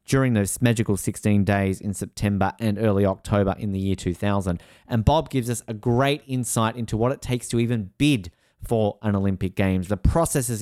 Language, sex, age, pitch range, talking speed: English, male, 30-49, 105-160 Hz, 190 wpm